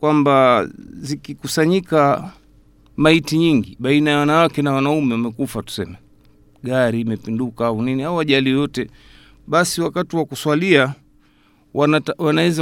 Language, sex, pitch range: Swahili, male, 120-160 Hz